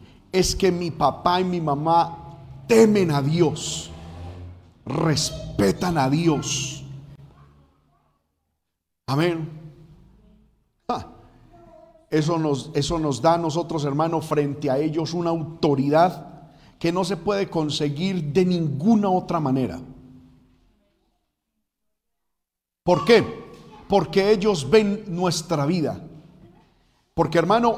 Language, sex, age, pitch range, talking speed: Spanish, male, 40-59, 145-205 Hz, 100 wpm